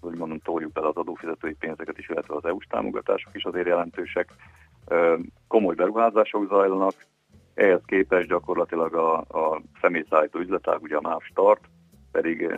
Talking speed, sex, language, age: 145 wpm, male, Hungarian, 50-69